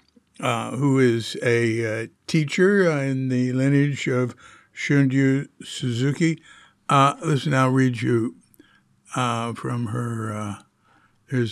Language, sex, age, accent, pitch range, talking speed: English, male, 60-79, American, 120-155 Hz, 110 wpm